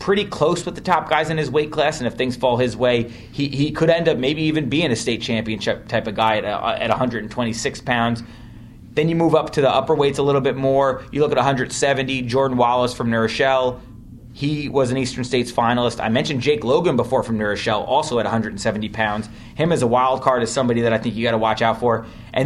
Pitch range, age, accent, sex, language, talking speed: 115-145 Hz, 30-49, American, male, English, 245 wpm